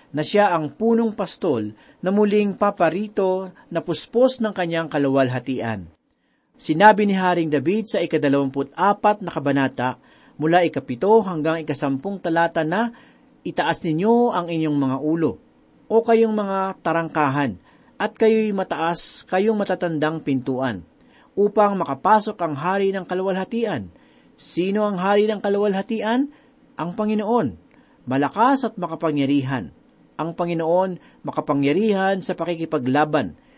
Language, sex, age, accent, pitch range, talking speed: Filipino, male, 40-59, native, 150-215 Hz, 115 wpm